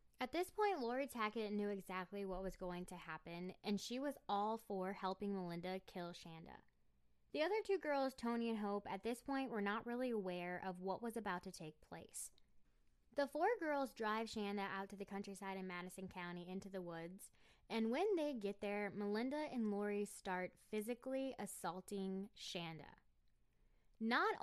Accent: American